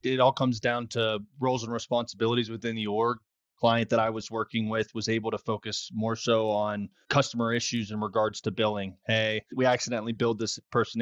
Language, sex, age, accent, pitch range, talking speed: English, male, 20-39, American, 110-125 Hz, 195 wpm